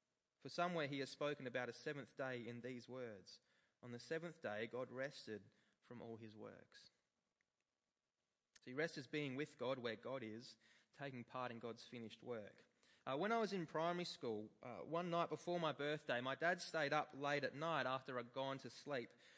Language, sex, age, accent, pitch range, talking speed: English, male, 20-39, Australian, 125-165 Hz, 190 wpm